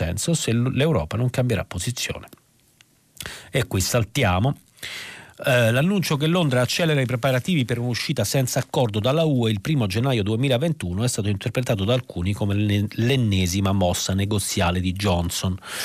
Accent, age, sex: native, 40-59, male